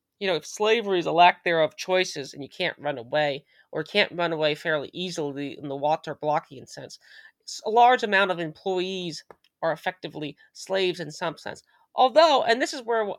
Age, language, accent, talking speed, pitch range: 30-49, English, American, 180 wpm, 165-205 Hz